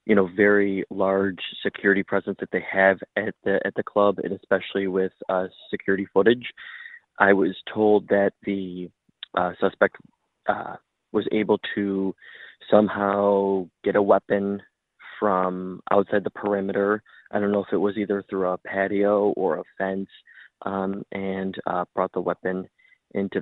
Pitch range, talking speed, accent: 95-110 Hz, 150 wpm, American